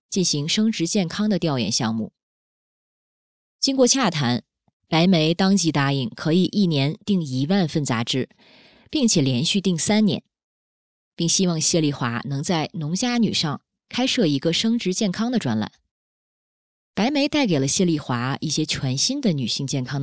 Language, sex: Chinese, female